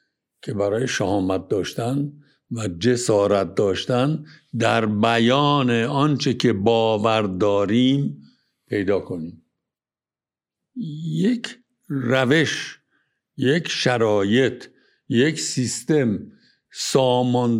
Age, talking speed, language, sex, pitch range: 60-79, 75 wpm, Persian, male, 110-155 Hz